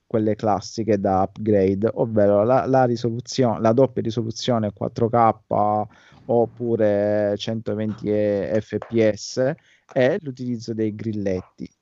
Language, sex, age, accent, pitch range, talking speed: Italian, male, 30-49, native, 105-120 Hz, 95 wpm